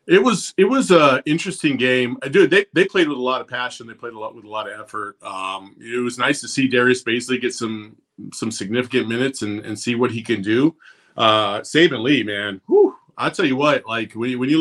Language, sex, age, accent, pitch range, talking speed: English, male, 30-49, American, 115-150 Hz, 240 wpm